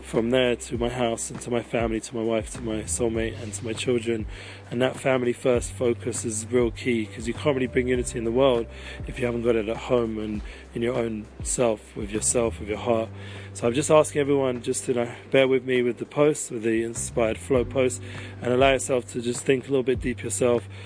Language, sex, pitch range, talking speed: English, male, 115-125 Hz, 240 wpm